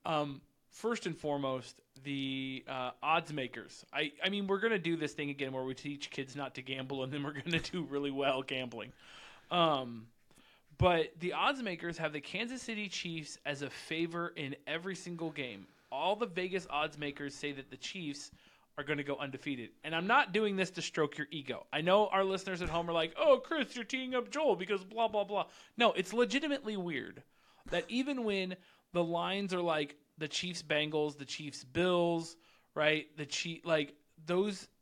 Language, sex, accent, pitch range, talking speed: English, male, American, 150-195 Hz, 195 wpm